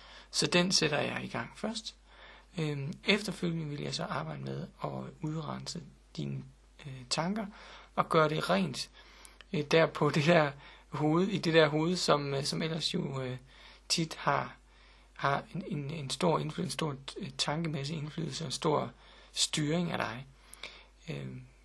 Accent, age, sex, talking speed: native, 60-79, male, 145 wpm